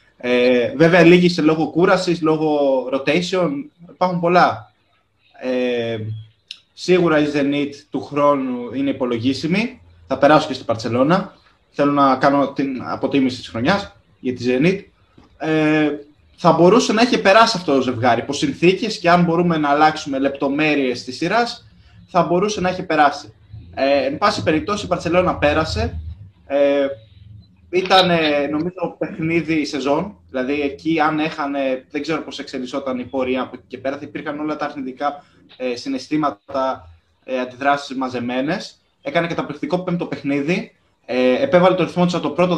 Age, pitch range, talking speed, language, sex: 20-39, 125-165 Hz, 140 wpm, Greek, male